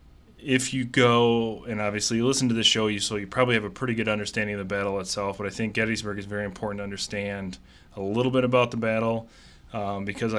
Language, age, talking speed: English, 20-39, 230 wpm